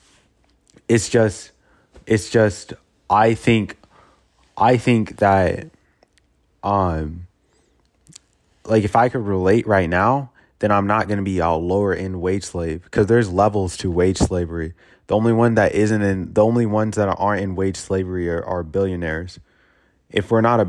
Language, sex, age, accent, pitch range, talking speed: English, male, 20-39, American, 90-100 Hz, 160 wpm